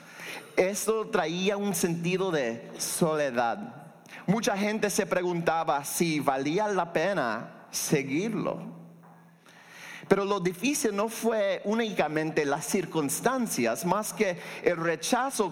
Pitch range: 150-200 Hz